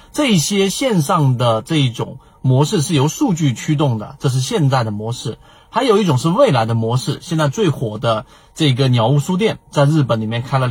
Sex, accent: male, native